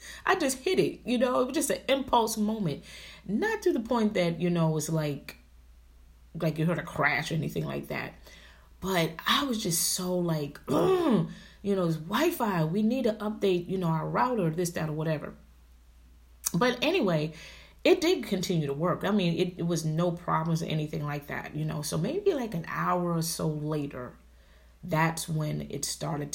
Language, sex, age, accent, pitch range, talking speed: English, female, 30-49, American, 150-190 Hz, 195 wpm